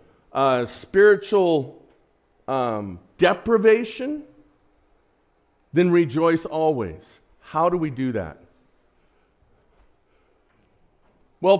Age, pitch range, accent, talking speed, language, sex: 50-69, 150-210 Hz, American, 65 wpm, English, male